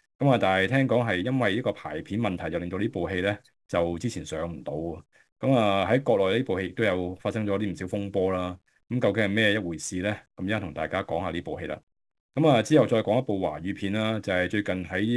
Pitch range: 90-110 Hz